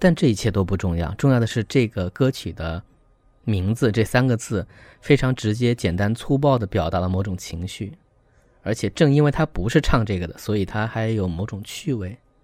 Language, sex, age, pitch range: Chinese, male, 20-39, 95-125 Hz